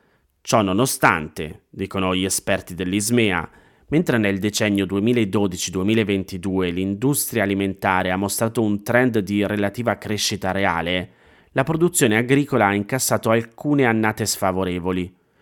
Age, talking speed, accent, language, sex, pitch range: 30-49, 110 wpm, native, Italian, male, 95-120 Hz